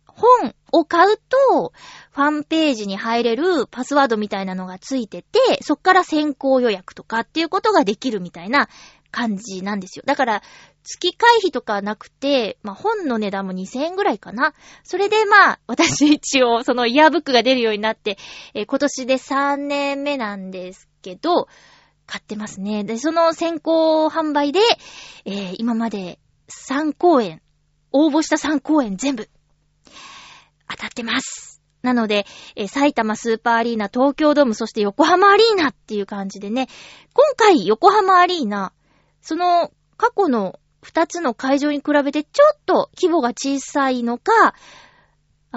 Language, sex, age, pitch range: Japanese, female, 20-39, 215-330 Hz